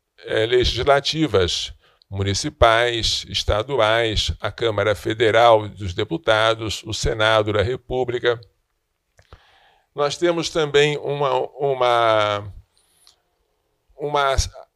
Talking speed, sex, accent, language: 75 wpm, male, Brazilian, Portuguese